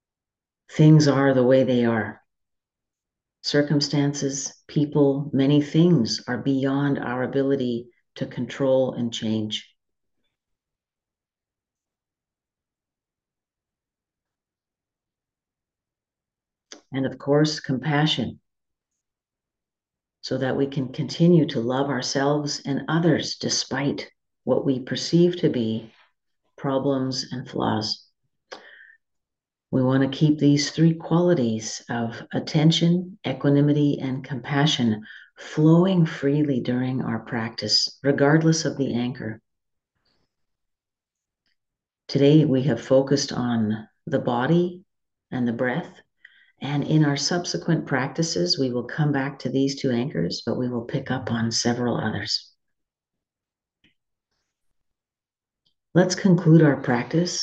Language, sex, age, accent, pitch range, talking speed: English, female, 50-69, American, 125-150 Hz, 100 wpm